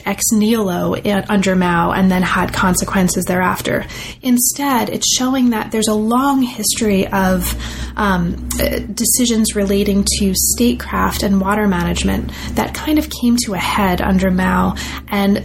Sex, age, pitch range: female, 30-49, 190-220 Hz